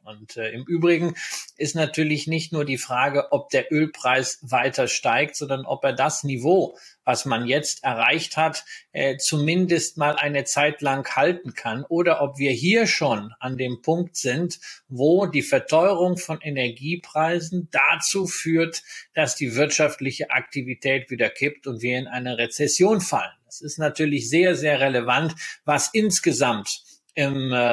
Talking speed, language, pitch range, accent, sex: 155 wpm, German, 135-165 Hz, German, male